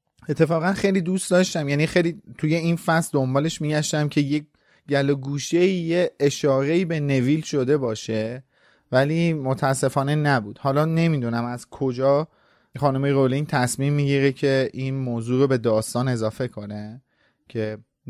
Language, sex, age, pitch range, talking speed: Persian, male, 30-49, 120-150 Hz, 140 wpm